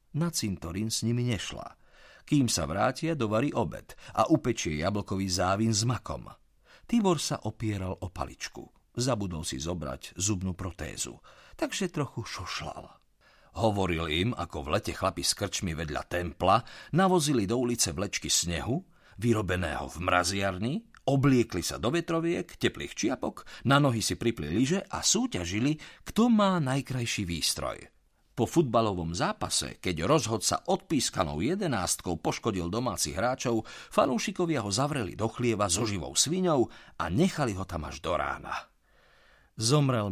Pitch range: 90-130 Hz